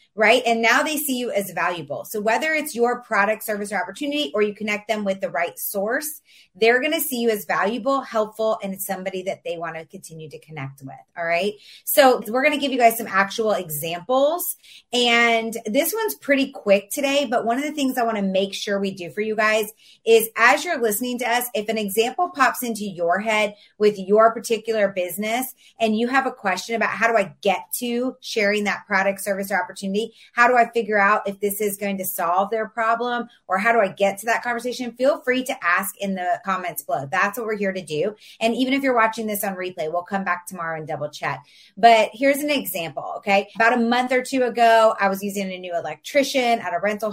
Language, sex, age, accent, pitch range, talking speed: English, female, 30-49, American, 195-235 Hz, 230 wpm